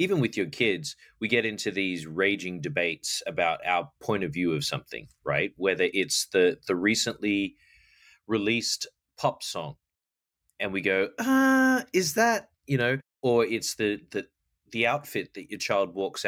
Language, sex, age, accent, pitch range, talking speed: English, male, 20-39, Australian, 100-140 Hz, 160 wpm